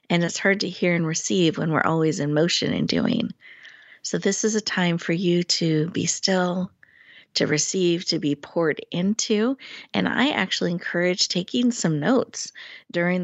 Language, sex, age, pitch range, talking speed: English, female, 40-59, 165-215 Hz, 170 wpm